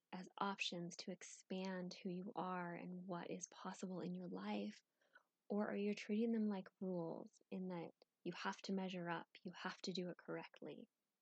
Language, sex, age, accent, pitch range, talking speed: English, female, 10-29, American, 190-235 Hz, 180 wpm